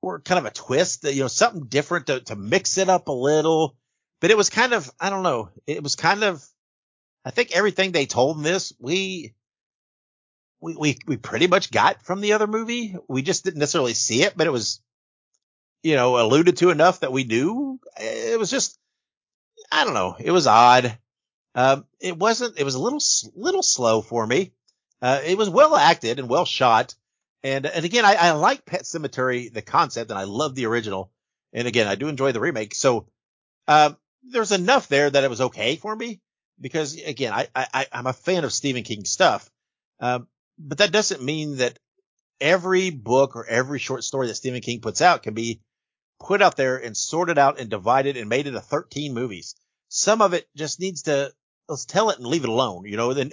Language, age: English, 50-69